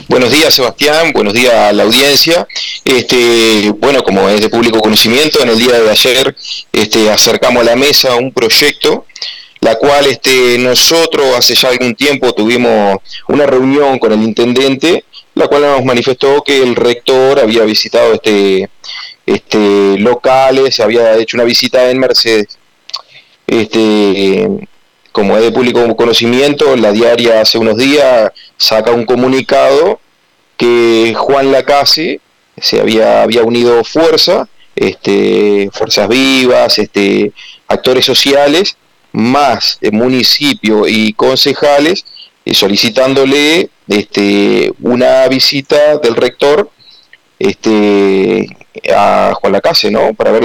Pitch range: 110-135 Hz